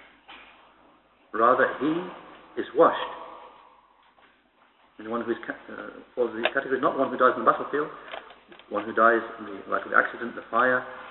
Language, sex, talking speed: English, male, 150 wpm